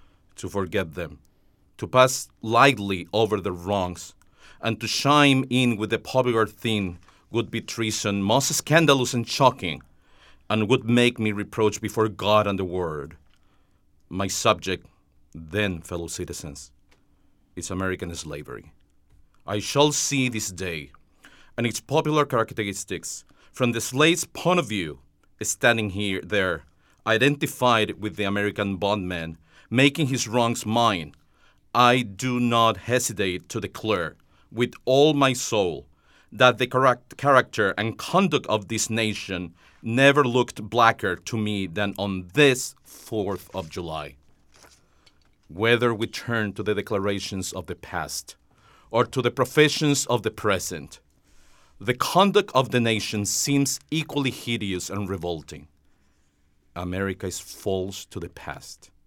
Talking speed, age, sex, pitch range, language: 130 wpm, 40-59, male, 90-120 Hz, English